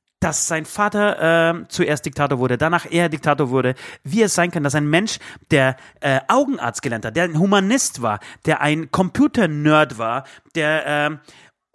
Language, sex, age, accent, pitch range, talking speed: German, male, 30-49, German, 135-190 Hz, 175 wpm